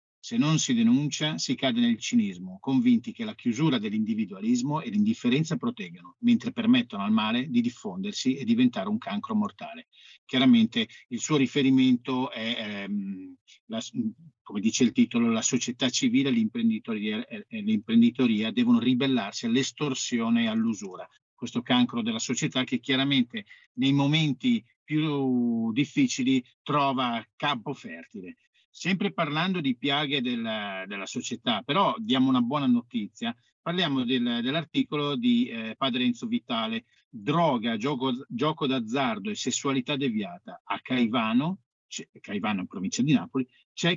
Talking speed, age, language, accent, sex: 130 wpm, 50-69, Italian, native, male